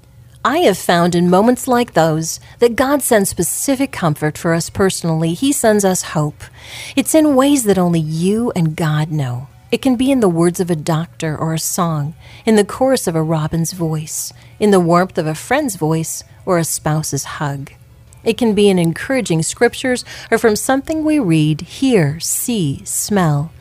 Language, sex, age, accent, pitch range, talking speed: English, female, 40-59, American, 155-220 Hz, 185 wpm